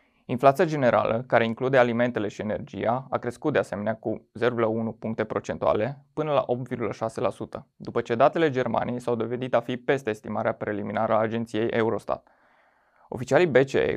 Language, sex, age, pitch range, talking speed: Romanian, male, 20-39, 110-130 Hz, 145 wpm